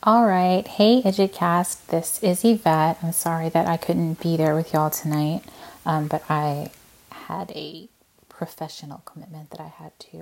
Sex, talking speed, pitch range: female, 165 wpm, 155-195 Hz